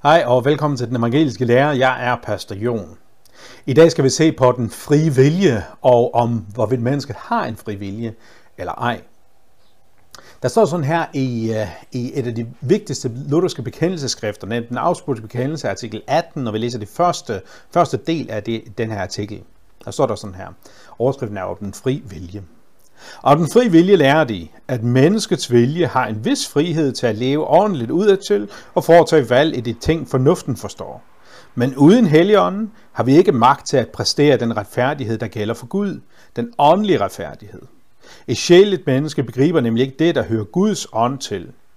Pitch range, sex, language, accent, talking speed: 115-165 Hz, male, Danish, native, 185 wpm